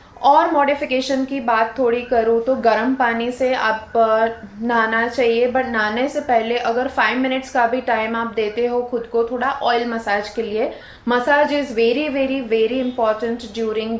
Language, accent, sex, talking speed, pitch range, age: Hindi, native, female, 170 wpm, 215-255 Hz, 20-39